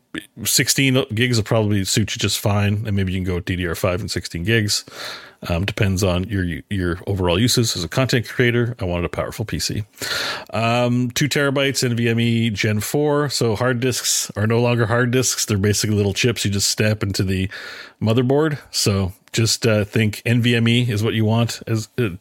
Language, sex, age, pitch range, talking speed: English, male, 30-49, 100-125 Hz, 190 wpm